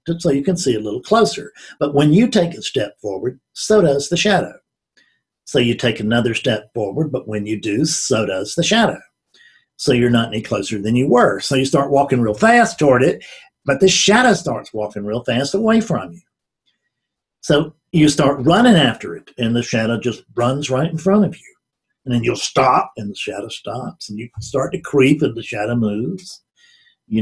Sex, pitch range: male, 125-180 Hz